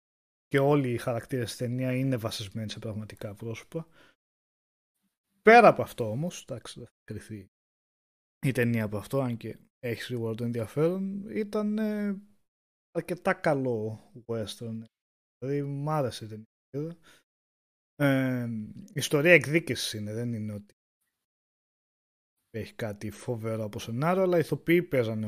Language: Greek